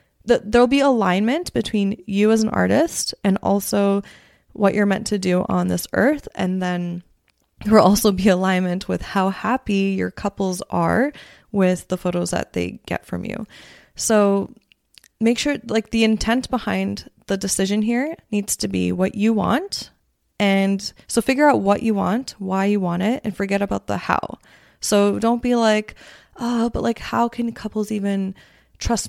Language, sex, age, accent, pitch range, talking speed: English, female, 20-39, American, 185-225 Hz, 170 wpm